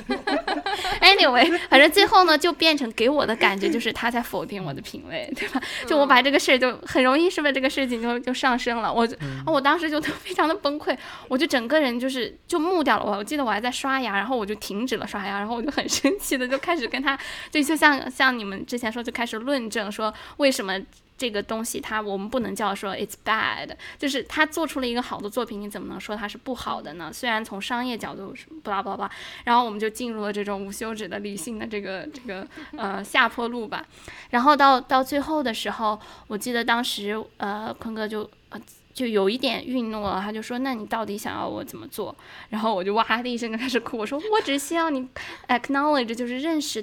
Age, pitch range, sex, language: 10-29, 215-285 Hz, female, Chinese